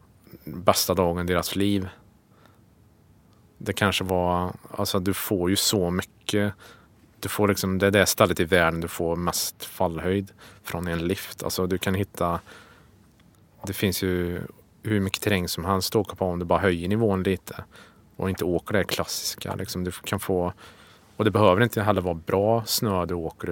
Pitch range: 90-100 Hz